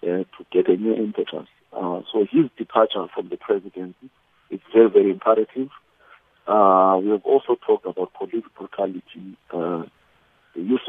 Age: 50-69